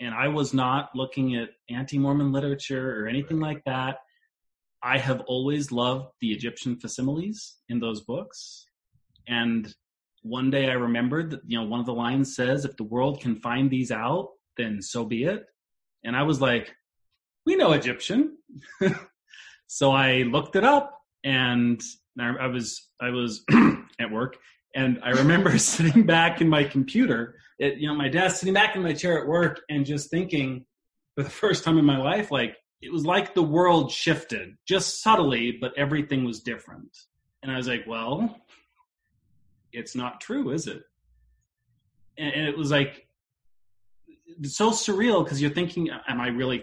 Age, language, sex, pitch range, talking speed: 30-49, English, male, 120-160 Hz, 170 wpm